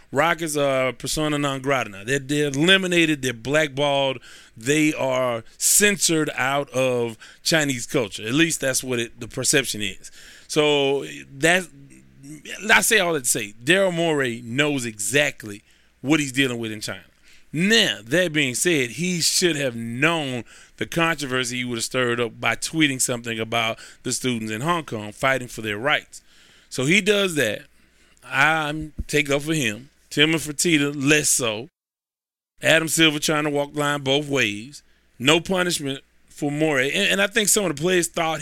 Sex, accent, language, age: male, American, English, 30-49